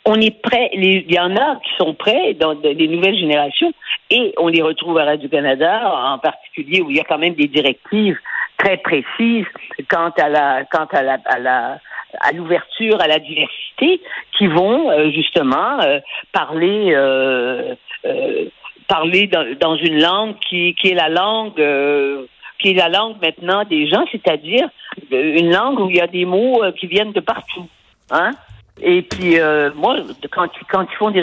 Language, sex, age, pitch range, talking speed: French, female, 50-69, 155-215 Hz, 180 wpm